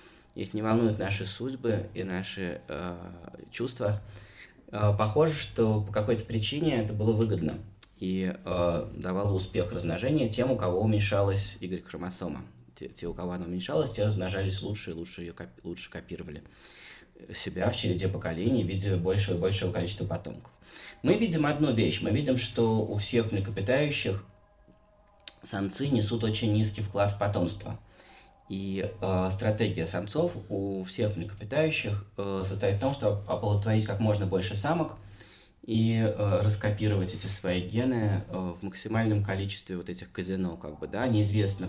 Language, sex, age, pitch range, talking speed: Russian, male, 20-39, 90-110 Hz, 145 wpm